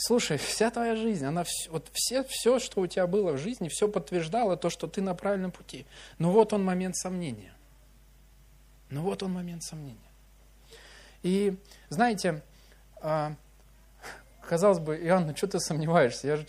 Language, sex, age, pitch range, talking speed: Russian, male, 20-39, 145-185 Hz, 155 wpm